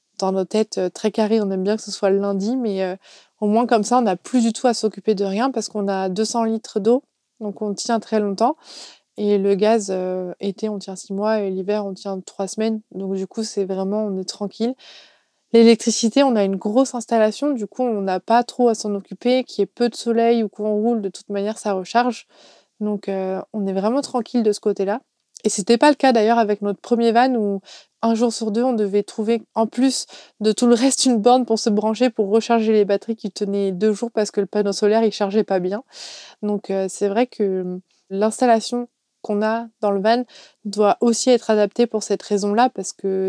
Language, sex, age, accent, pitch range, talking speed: French, female, 20-39, French, 200-230 Hz, 235 wpm